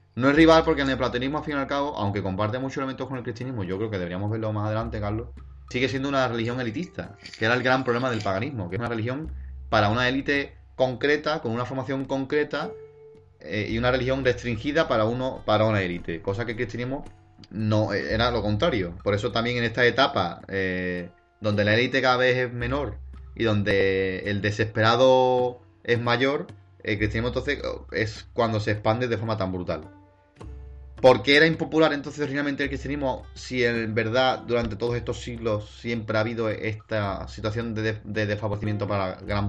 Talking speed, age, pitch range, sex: 190 wpm, 30-49, 100-125 Hz, male